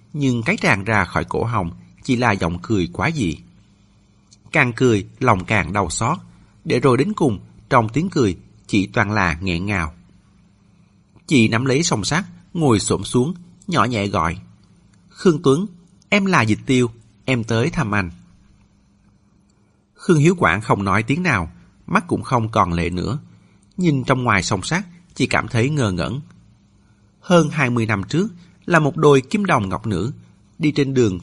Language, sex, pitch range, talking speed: Vietnamese, male, 100-140 Hz, 175 wpm